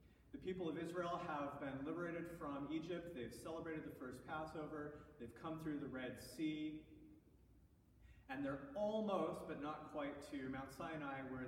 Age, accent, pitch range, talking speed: 30-49, American, 135-170 Hz, 155 wpm